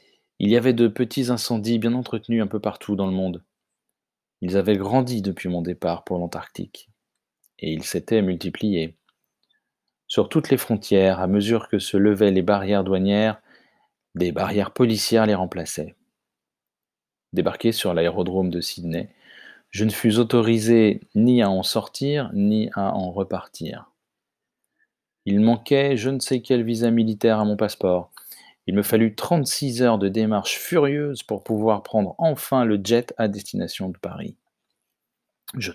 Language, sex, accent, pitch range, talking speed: French, male, French, 95-115 Hz, 150 wpm